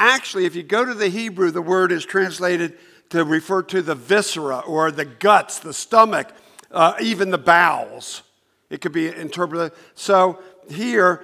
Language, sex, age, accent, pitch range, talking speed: English, male, 50-69, American, 160-210 Hz, 165 wpm